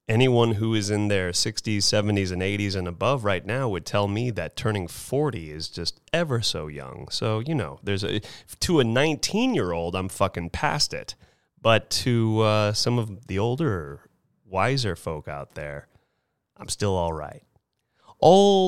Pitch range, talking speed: 90-115 Hz, 165 wpm